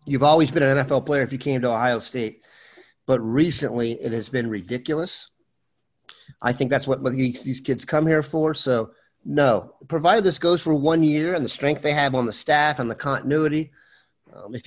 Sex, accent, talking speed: male, American, 195 wpm